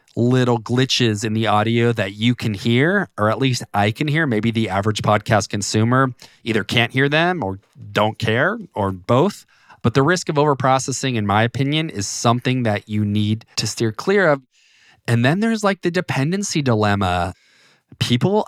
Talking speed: 175 wpm